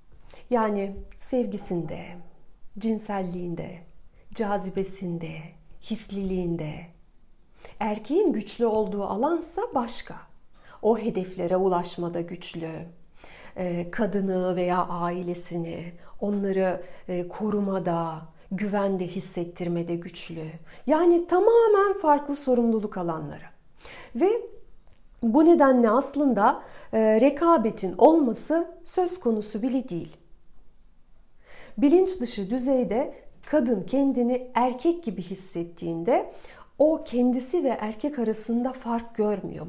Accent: native